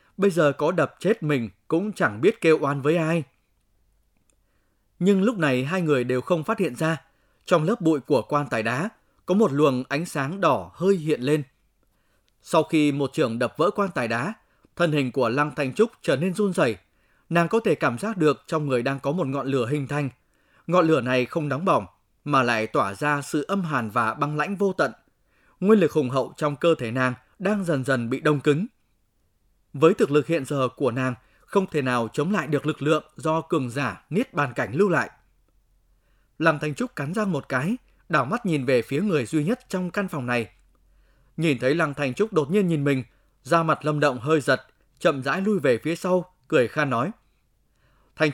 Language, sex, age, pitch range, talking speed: Vietnamese, male, 20-39, 130-175 Hz, 215 wpm